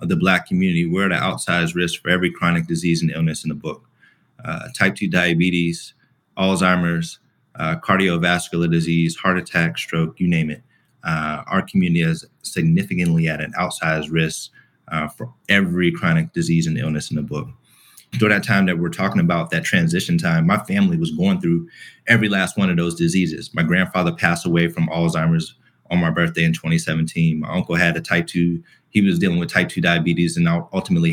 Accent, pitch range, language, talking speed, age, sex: American, 85-120 Hz, English, 190 wpm, 30-49, male